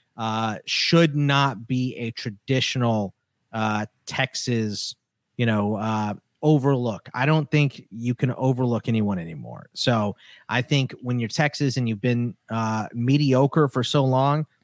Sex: male